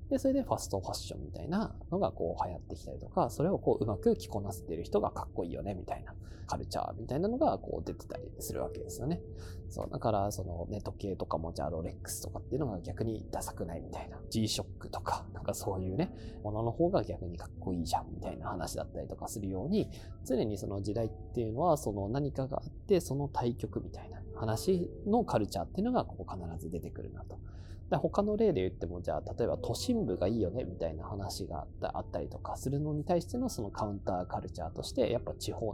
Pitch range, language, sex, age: 90-115 Hz, Japanese, male, 20-39